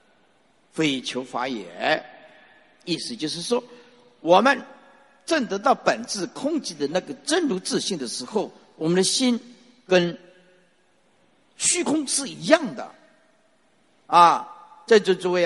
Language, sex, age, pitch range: Chinese, male, 50-69, 185-300 Hz